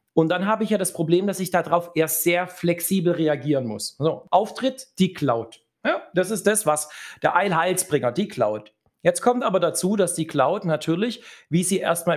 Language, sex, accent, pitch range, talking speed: German, male, German, 155-200 Hz, 190 wpm